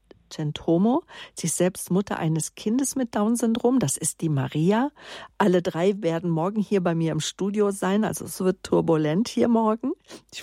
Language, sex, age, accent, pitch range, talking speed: German, female, 50-69, German, 175-210 Hz, 165 wpm